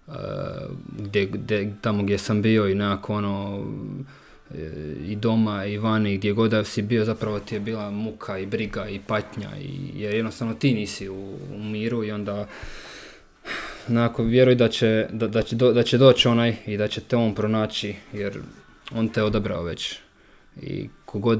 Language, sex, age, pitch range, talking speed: Croatian, male, 20-39, 100-115 Hz, 170 wpm